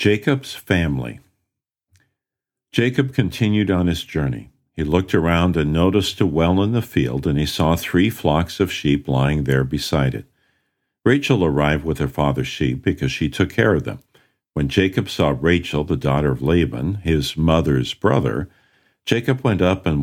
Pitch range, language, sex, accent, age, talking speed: 80-105 Hz, English, male, American, 50-69, 165 wpm